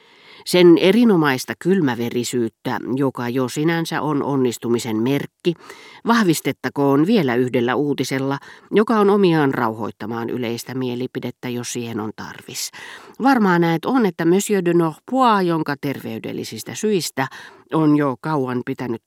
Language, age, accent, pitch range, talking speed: Finnish, 40-59, native, 120-175 Hz, 115 wpm